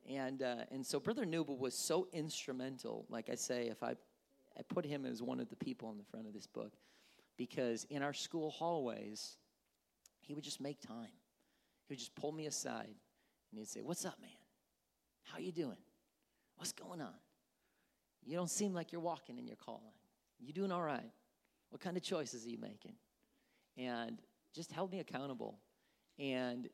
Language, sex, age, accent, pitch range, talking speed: English, male, 40-59, American, 115-155 Hz, 185 wpm